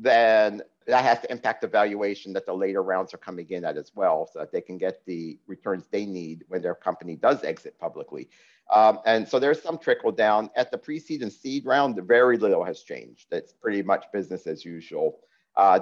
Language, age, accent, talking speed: English, 50-69, American, 215 wpm